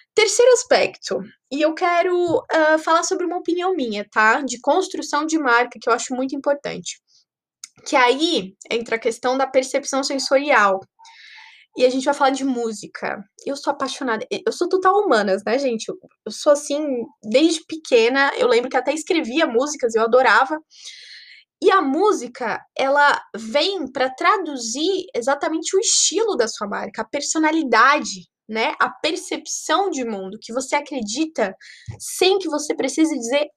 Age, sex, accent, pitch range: 20-39, female, Brazilian, 250-340 Hz